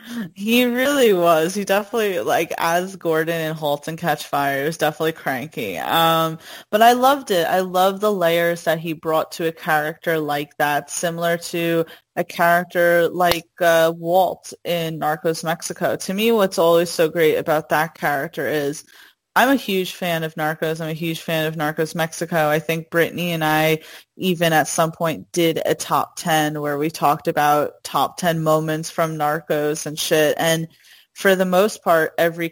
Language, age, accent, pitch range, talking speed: English, 20-39, American, 160-185 Hz, 180 wpm